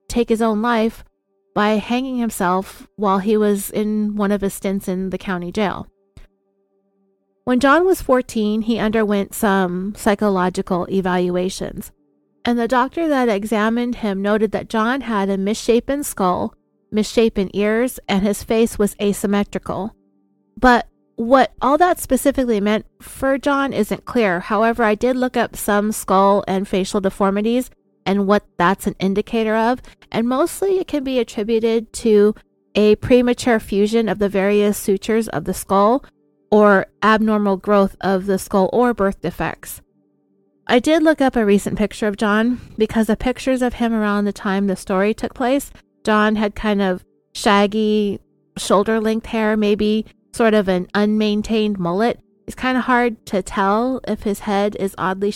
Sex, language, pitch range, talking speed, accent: female, English, 195-230 Hz, 155 wpm, American